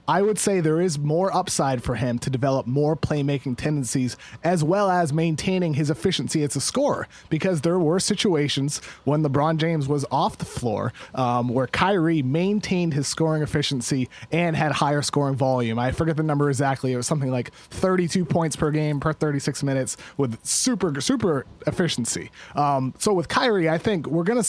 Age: 30-49